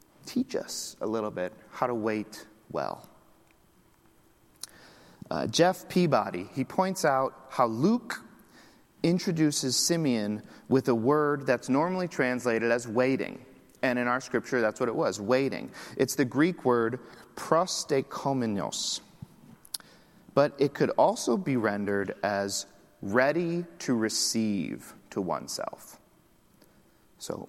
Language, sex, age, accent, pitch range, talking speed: English, male, 40-59, American, 115-145 Hz, 120 wpm